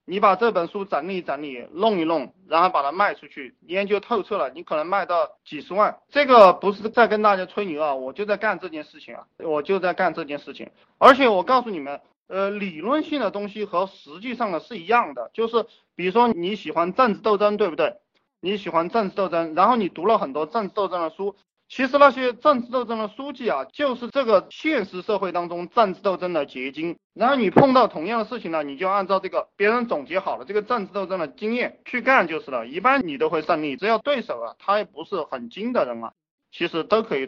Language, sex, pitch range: Chinese, male, 155-230 Hz